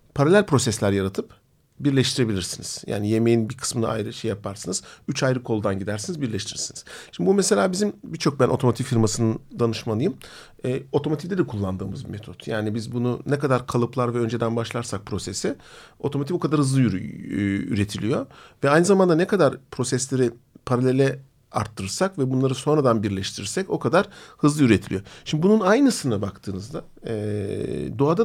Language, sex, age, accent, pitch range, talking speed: Turkish, male, 50-69, native, 110-145 Hz, 150 wpm